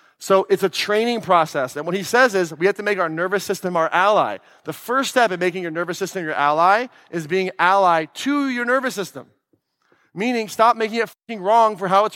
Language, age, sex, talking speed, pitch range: English, 30-49, male, 220 wpm, 155-215 Hz